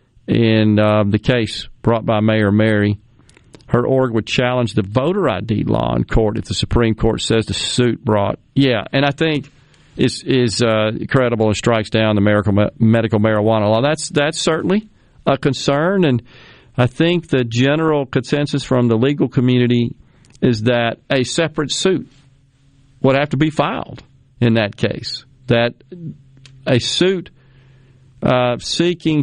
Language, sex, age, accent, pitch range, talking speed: English, male, 50-69, American, 110-135 Hz, 155 wpm